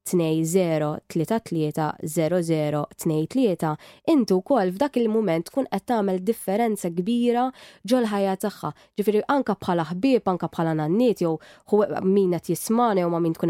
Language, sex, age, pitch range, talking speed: English, female, 20-39, 170-220 Hz, 145 wpm